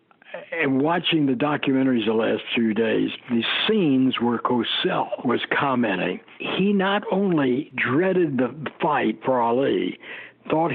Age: 60-79